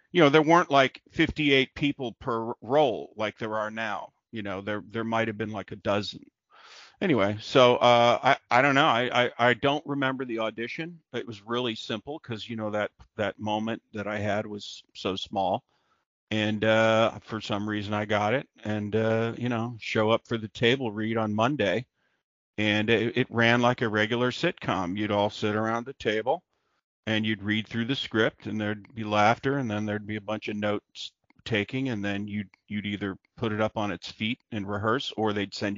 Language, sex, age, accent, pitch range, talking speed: English, male, 50-69, American, 105-115 Hz, 205 wpm